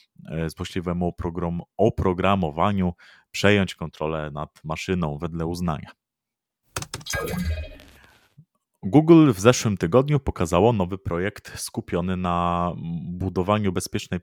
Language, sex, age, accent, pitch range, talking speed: Polish, male, 30-49, native, 80-100 Hz, 85 wpm